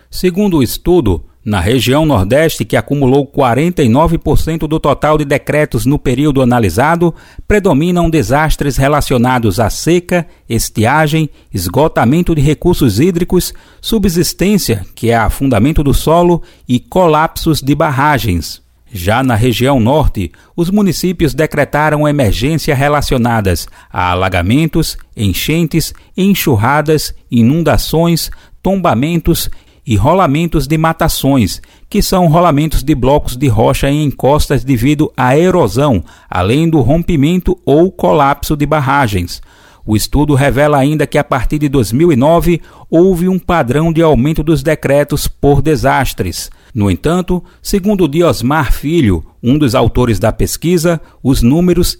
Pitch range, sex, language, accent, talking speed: 125-165 Hz, male, Portuguese, Brazilian, 120 wpm